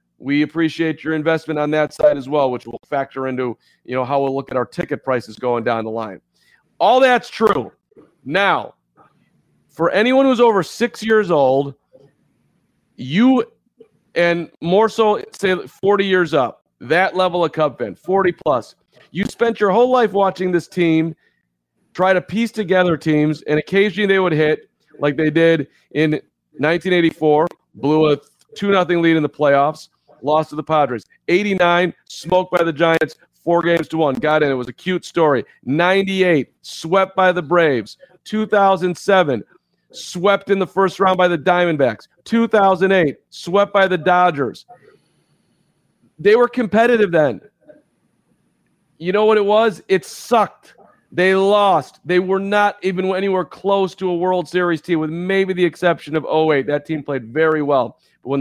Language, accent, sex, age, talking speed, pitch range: English, American, male, 40-59, 165 wpm, 150-195 Hz